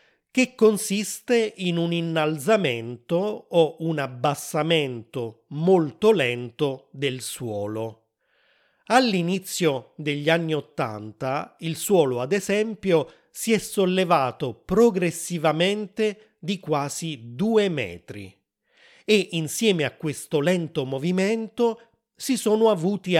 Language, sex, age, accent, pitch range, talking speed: Italian, male, 30-49, native, 140-195 Hz, 95 wpm